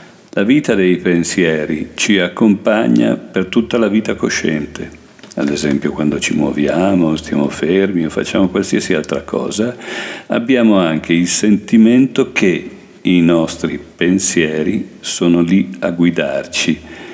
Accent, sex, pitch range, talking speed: native, male, 80-95 Hz, 125 wpm